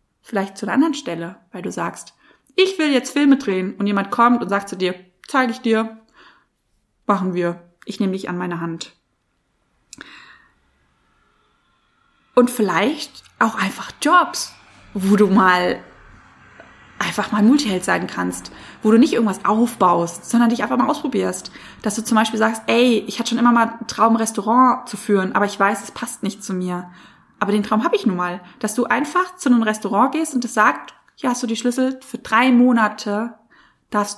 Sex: female